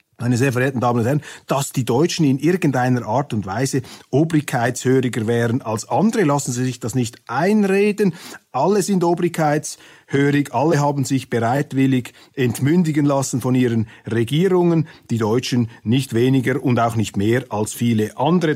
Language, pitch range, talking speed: German, 125-165 Hz, 150 wpm